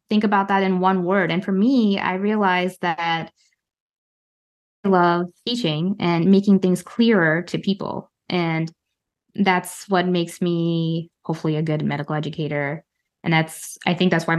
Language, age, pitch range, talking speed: English, 20-39, 165-210 Hz, 155 wpm